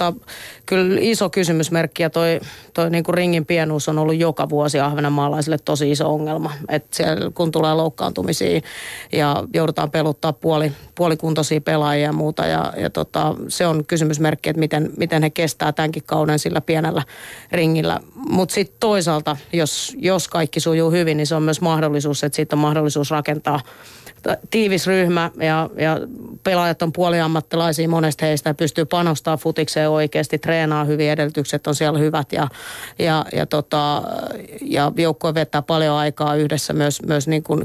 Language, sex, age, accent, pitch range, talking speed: Finnish, female, 30-49, native, 150-165 Hz, 155 wpm